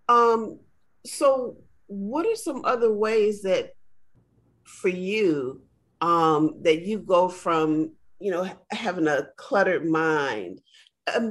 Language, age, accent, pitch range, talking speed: English, 40-59, American, 170-245 Hz, 115 wpm